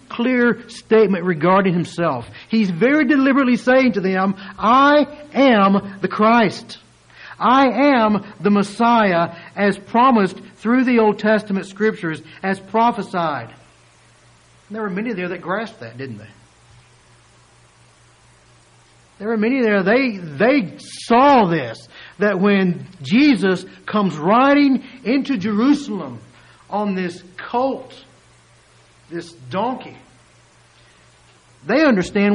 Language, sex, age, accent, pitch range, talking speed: English, male, 60-79, American, 185-245 Hz, 110 wpm